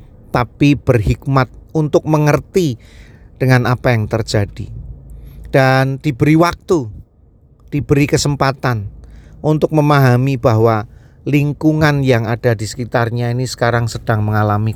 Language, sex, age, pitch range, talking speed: Indonesian, male, 40-59, 105-130 Hz, 100 wpm